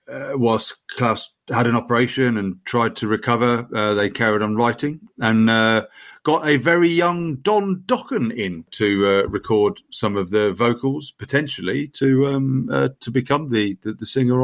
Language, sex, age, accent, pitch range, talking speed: English, male, 40-59, British, 100-135 Hz, 170 wpm